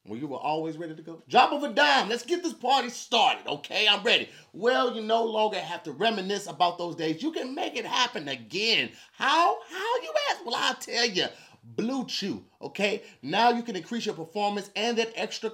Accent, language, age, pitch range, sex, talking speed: American, English, 30-49, 165-235 Hz, male, 210 wpm